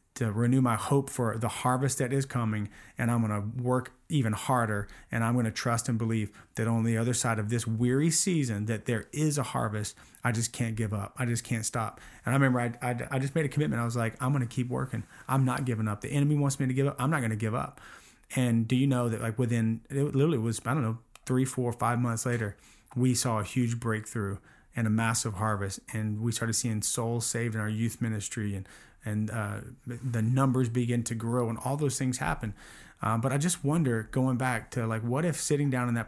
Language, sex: English, male